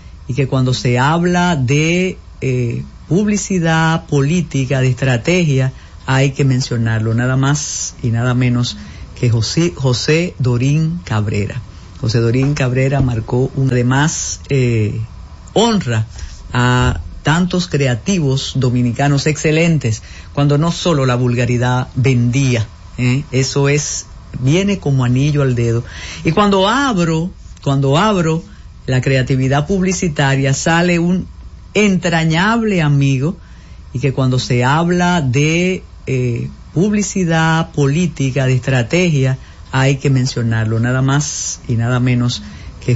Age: 50-69